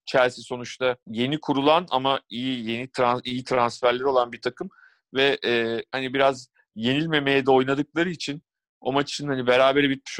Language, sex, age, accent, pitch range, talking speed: Turkish, male, 40-59, native, 120-135 Hz, 155 wpm